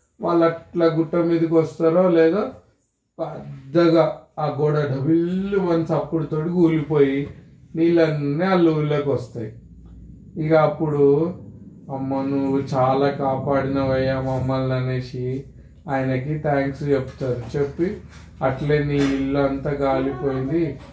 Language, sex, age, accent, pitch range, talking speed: Telugu, male, 30-49, native, 130-150 Hz, 100 wpm